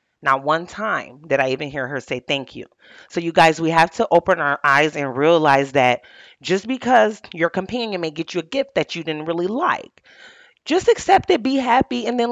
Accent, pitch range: American, 150-235 Hz